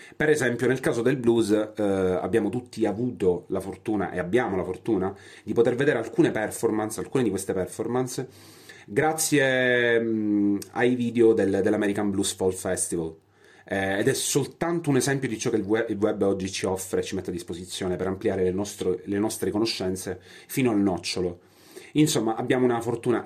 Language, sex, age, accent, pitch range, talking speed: Italian, male, 30-49, native, 95-125 Hz, 170 wpm